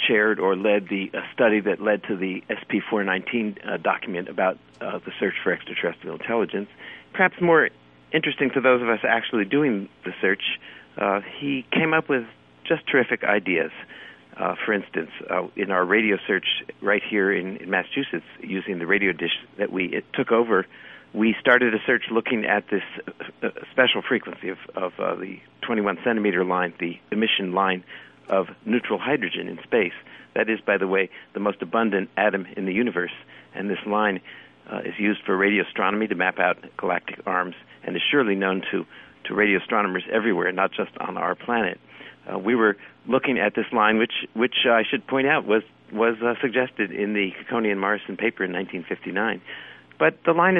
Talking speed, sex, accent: 180 wpm, male, American